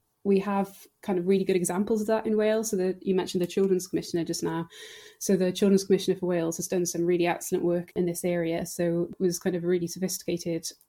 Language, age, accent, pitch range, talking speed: English, 20-39, British, 175-190 Hz, 230 wpm